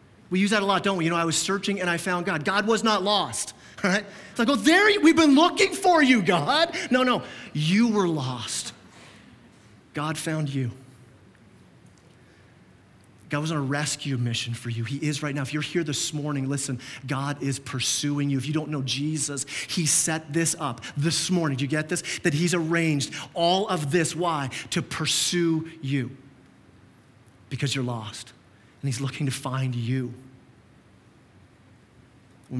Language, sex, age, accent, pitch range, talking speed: English, male, 30-49, American, 130-170 Hz, 180 wpm